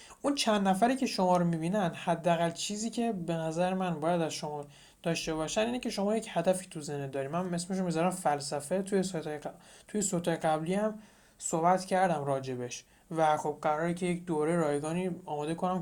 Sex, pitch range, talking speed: male, 155-195 Hz, 180 wpm